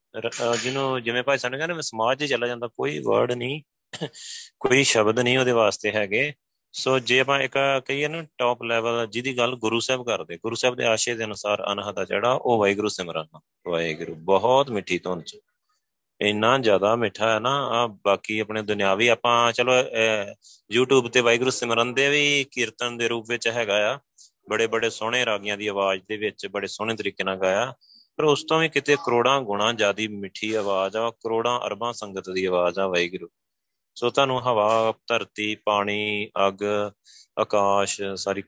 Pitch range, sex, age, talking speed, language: 100-125 Hz, male, 30-49, 175 wpm, Punjabi